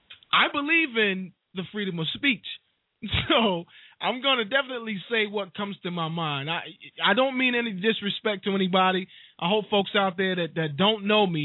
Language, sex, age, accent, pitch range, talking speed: English, male, 20-39, American, 160-205 Hz, 190 wpm